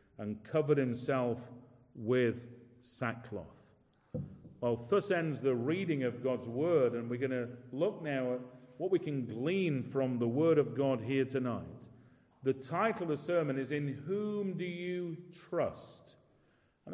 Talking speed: 150 wpm